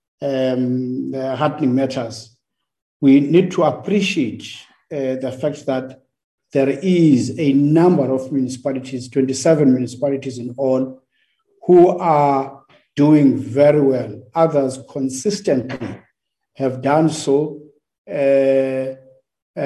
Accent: South African